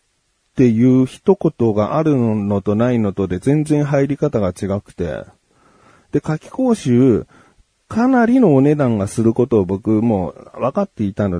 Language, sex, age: Japanese, male, 40-59